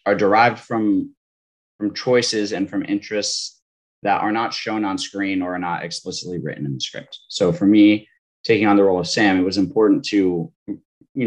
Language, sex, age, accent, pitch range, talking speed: English, male, 20-39, American, 85-110 Hz, 190 wpm